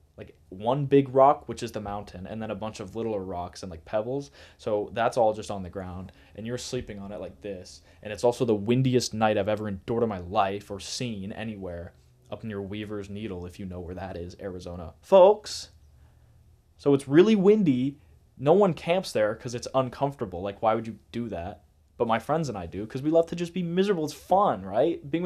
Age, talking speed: 10-29, 220 wpm